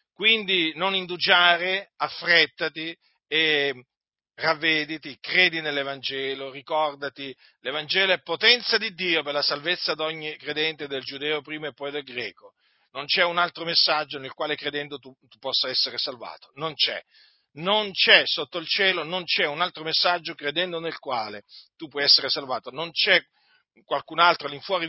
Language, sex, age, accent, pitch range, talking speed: Italian, male, 50-69, native, 140-175 Hz, 155 wpm